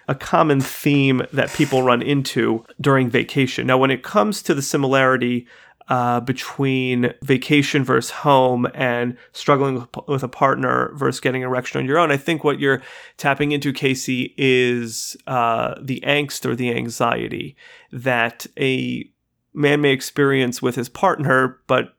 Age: 30-49